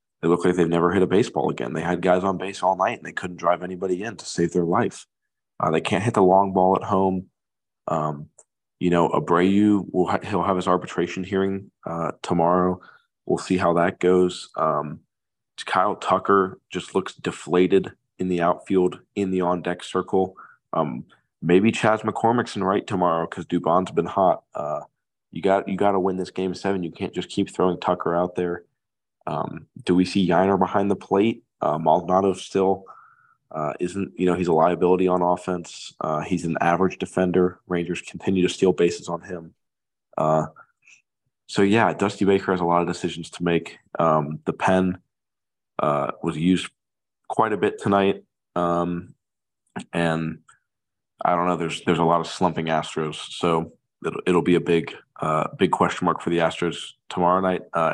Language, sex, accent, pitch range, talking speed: English, male, American, 85-95 Hz, 180 wpm